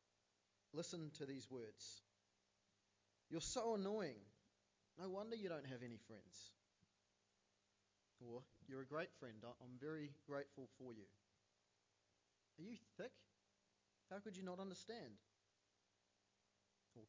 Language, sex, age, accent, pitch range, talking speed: English, male, 30-49, Australian, 100-145 Hz, 115 wpm